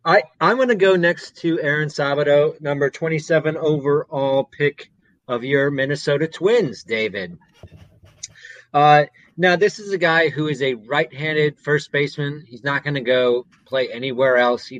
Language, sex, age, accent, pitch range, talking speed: English, male, 30-49, American, 125-155 Hz, 160 wpm